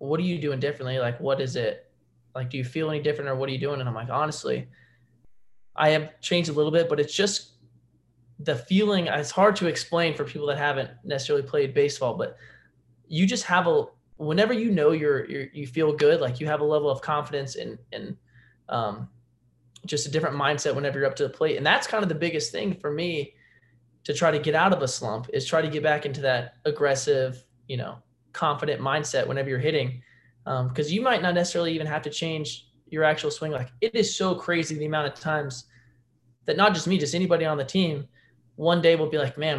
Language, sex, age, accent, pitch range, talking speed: English, male, 20-39, American, 130-165 Hz, 225 wpm